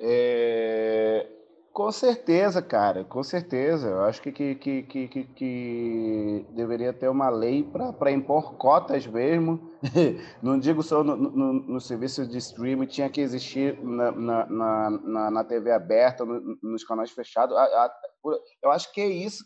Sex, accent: male, Brazilian